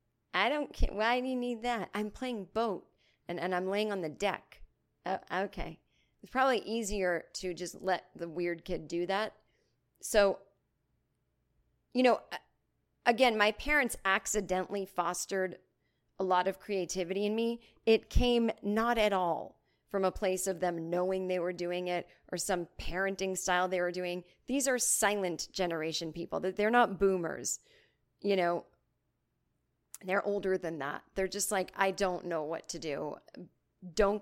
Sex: female